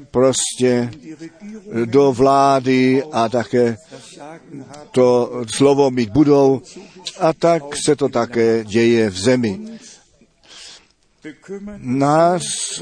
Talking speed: 85 wpm